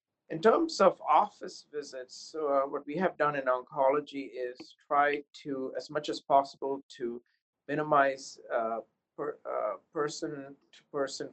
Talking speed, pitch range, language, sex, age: 125 wpm, 125-155 Hz, English, male, 50-69